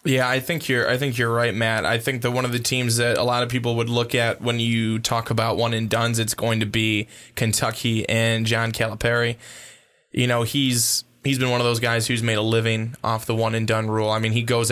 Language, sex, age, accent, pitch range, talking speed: English, male, 20-39, American, 110-120 Hz, 255 wpm